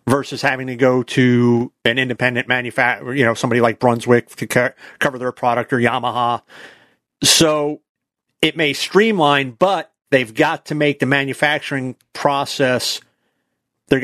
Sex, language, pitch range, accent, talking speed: male, English, 120-140 Hz, American, 135 wpm